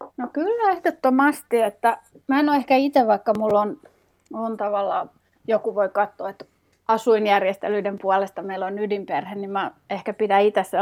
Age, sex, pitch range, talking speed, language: 30-49, female, 185-215 Hz, 155 wpm, Finnish